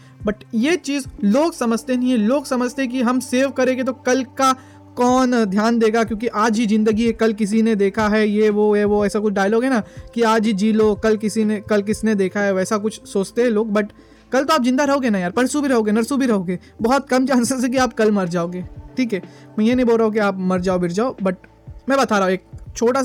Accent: native